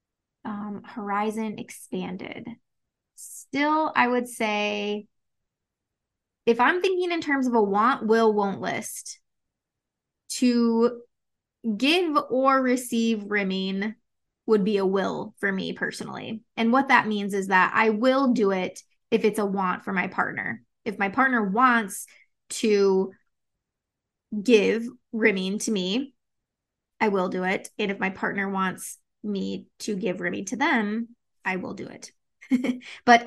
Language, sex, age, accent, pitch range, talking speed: English, female, 20-39, American, 200-245 Hz, 135 wpm